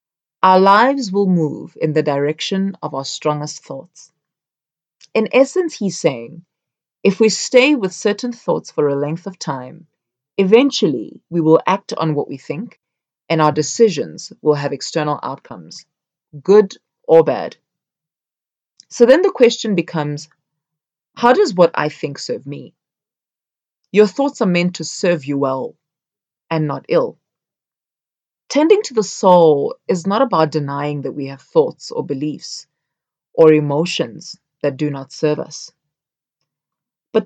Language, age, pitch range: English, 30-49, 150-210 Hz